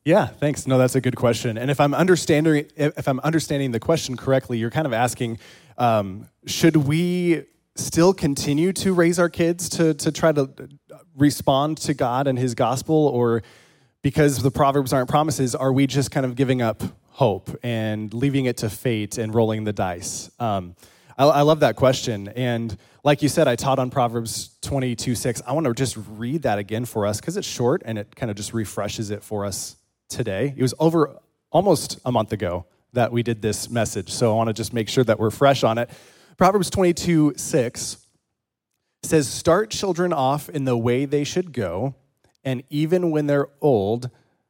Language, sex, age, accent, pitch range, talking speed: English, male, 20-39, American, 115-150 Hz, 190 wpm